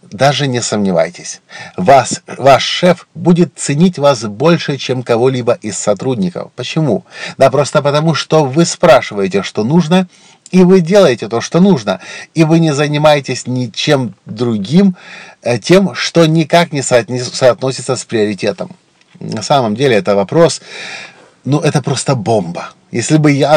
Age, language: 50-69, Russian